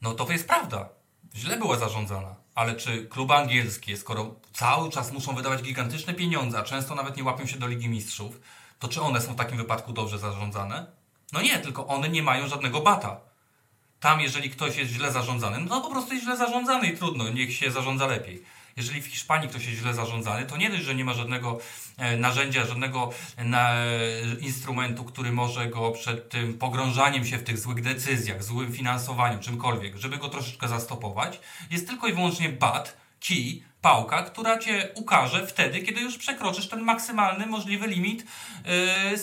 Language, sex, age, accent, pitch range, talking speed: Polish, male, 30-49, native, 120-175 Hz, 180 wpm